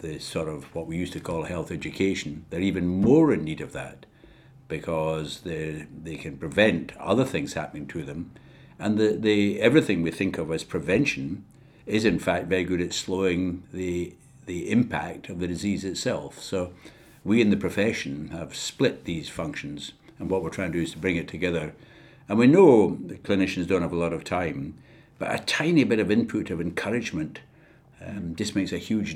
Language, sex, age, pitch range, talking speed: English, male, 60-79, 85-110 Hz, 190 wpm